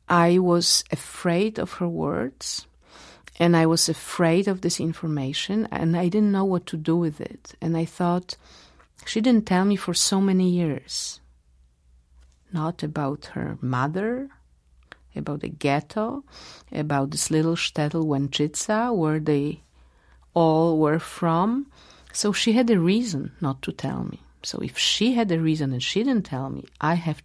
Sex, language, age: female, English, 50-69